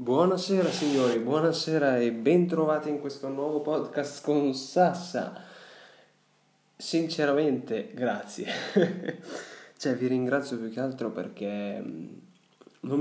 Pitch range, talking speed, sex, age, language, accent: 120-150 Hz, 95 wpm, male, 20-39, Italian, native